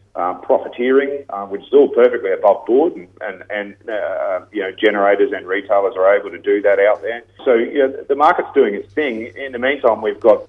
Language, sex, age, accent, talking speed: English, male, 40-59, Australian, 210 wpm